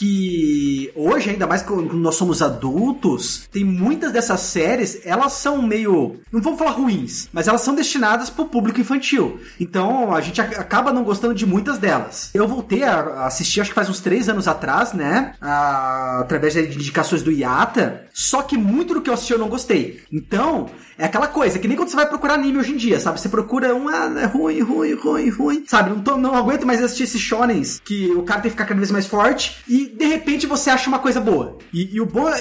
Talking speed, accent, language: 215 wpm, Brazilian, Portuguese